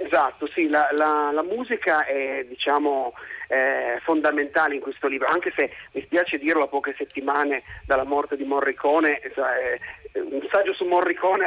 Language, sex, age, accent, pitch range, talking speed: Italian, male, 40-59, native, 135-165 Hz, 155 wpm